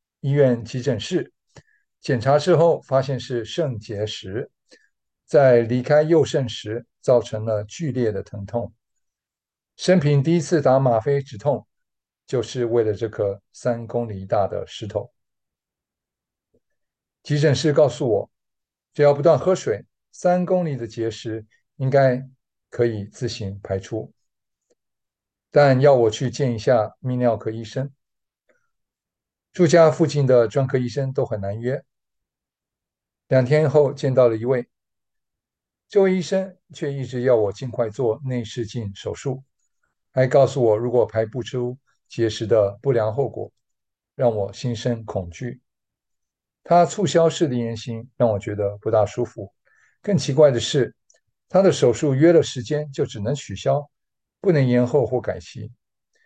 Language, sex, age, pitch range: English, male, 50-69, 115-145 Hz